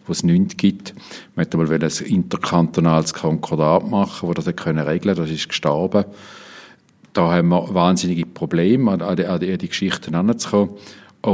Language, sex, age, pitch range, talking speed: German, male, 50-69, 85-105 Hz, 150 wpm